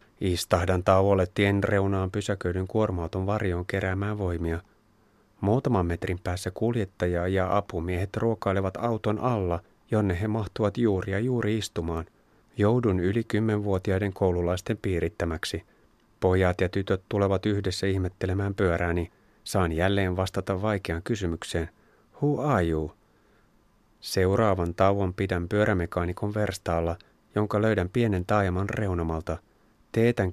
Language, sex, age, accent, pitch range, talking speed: Finnish, male, 30-49, native, 90-105 Hz, 105 wpm